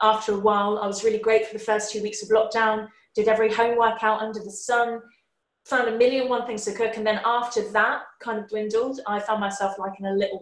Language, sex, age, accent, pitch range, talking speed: English, female, 20-39, British, 200-230 Hz, 240 wpm